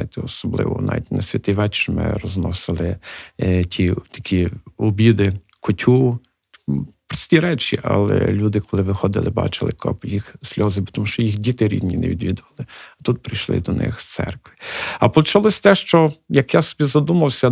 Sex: male